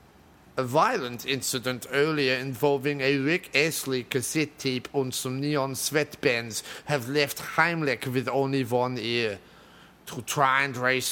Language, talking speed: English, 135 wpm